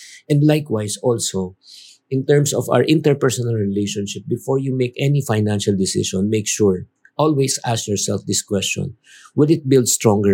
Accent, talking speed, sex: Filipino, 150 wpm, male